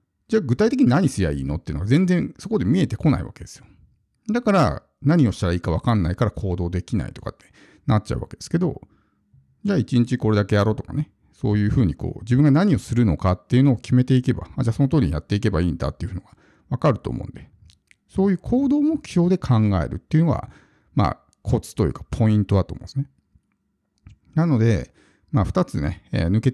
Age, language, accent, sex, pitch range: 50-69, Japanese, native, male, 100-150 Hz